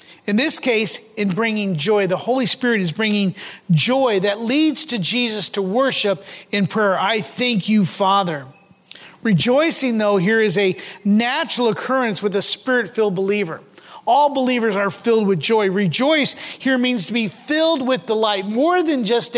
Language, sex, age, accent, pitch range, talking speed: English, male, 40-59, American, 190-250 Hz, 160 wpm